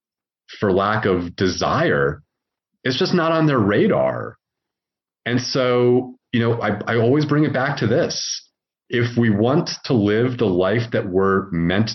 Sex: male